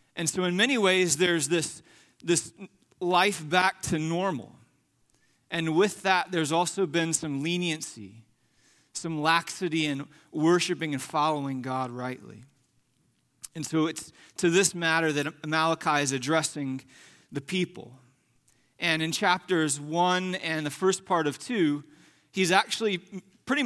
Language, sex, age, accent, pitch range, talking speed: English, male, 30-49, American, 145-180 Hz, 135 wpm